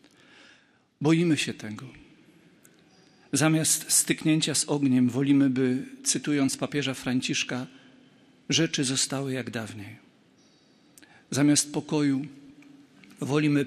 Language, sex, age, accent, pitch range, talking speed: Polish, male, 50-69, native, 125-150 Hz, 85 wpm